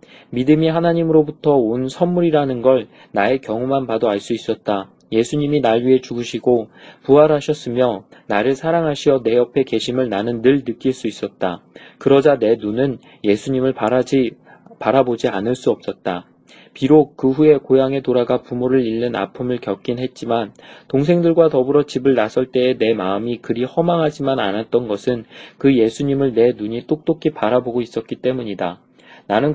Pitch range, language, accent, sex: 115-145 Hz, Korean, native, male